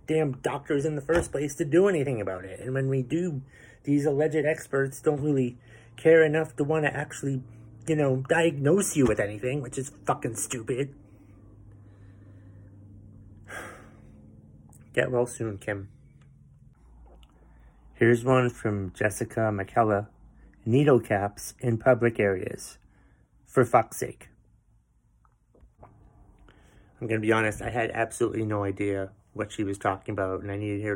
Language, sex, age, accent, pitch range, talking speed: English, male, 30-49, American, 105-135 Hz, 140 wpm